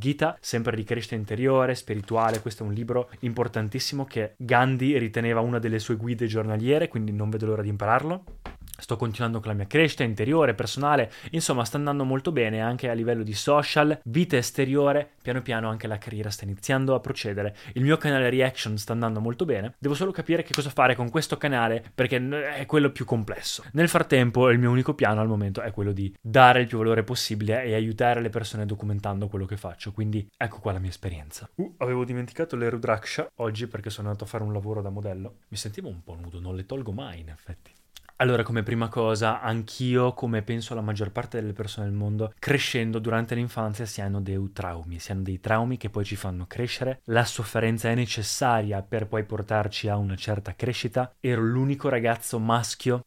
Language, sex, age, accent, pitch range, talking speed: Italian, male, 20-39, native, 105-125 Hz, 200 wpm